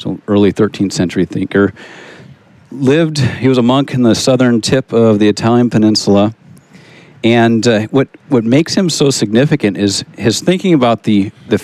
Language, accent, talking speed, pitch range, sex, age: English, American, 165 wpm, 105-130 Hz, male, 50-69